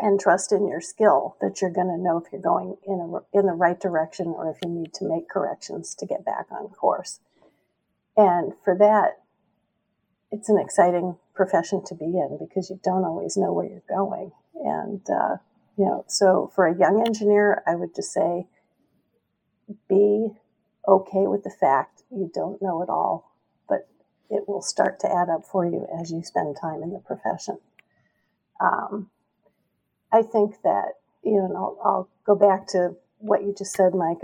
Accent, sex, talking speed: American, female, 185 wpm